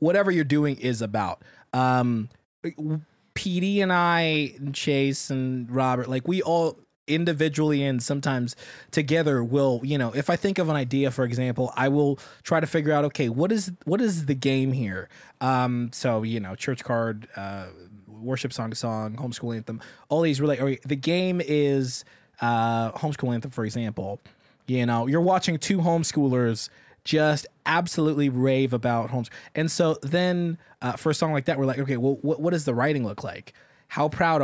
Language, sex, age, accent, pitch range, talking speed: English, male, 20-39, American, 120-155 Hz, 180 wpm